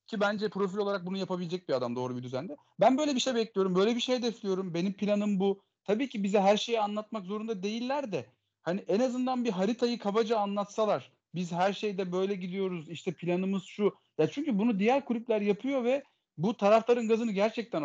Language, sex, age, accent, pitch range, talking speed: Turkish, male, 40-59, native, 185-240 Hz, 195 wpm